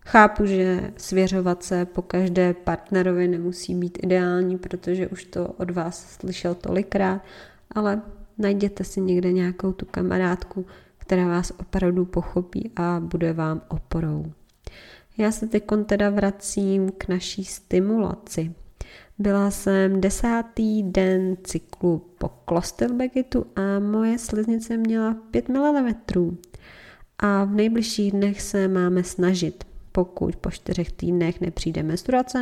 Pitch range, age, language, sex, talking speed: 180-215 Hz, 20-39, Czech, female, 120 wpm